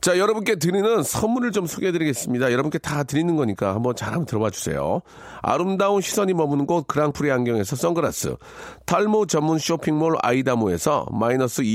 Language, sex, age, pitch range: Korean, male, 40-59, 140-180 Hz